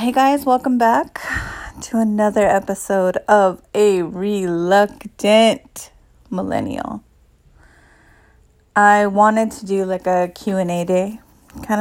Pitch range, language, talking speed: 185-225 Hz, English, 100 wpm